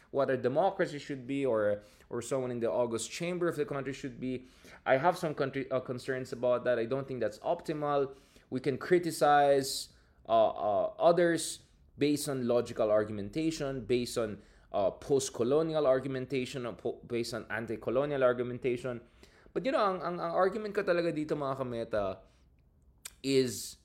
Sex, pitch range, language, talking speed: male, 115-150 Hz, English, 160 wpm